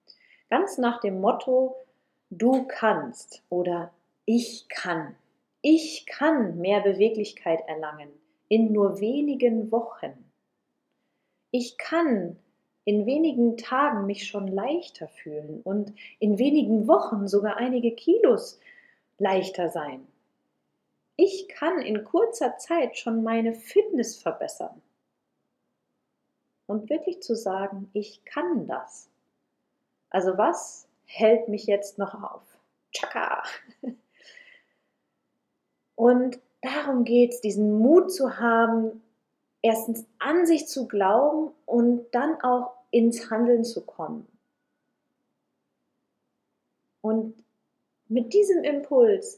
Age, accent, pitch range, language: 40-59, German, 205-270 Hz, German